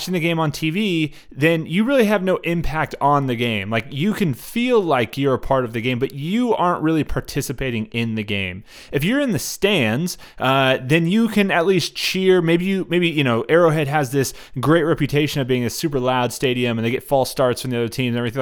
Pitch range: 125-165 Hz